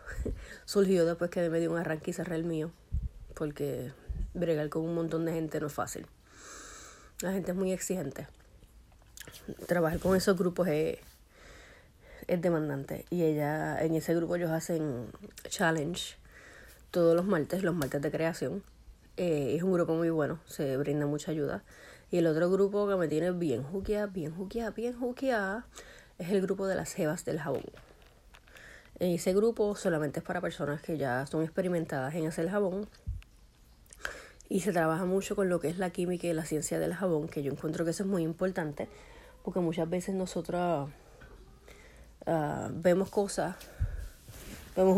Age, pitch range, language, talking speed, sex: 30-49, 155-190 Hz, Spanish, 165 wpm, female